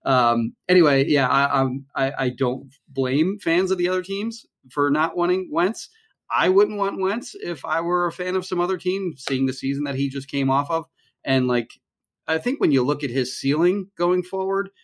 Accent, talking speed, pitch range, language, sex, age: American, 205 wpm, 115-145 Hz, English, male, 30-49